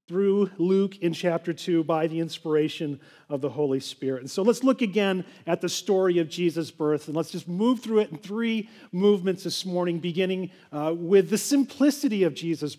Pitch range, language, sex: 160-215 Hz, English, male